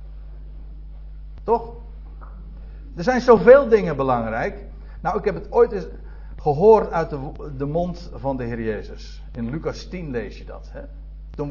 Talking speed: 150 wpm